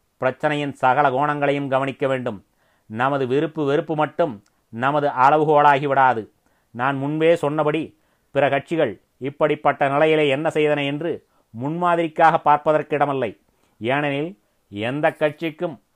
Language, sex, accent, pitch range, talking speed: Tamil, male, native, 135-155 Hz, 95 wpm